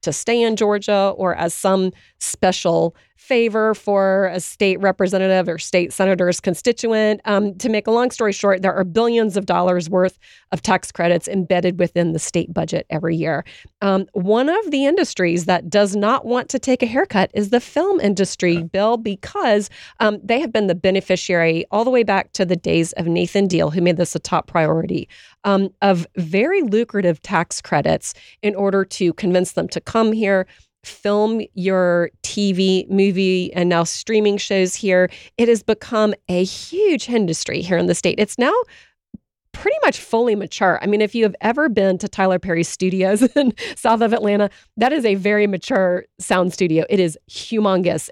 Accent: American